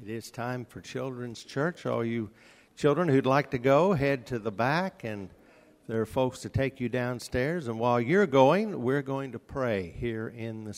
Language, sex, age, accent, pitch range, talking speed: English, male, 50-69, American, 110-135 Hz, 200 wpm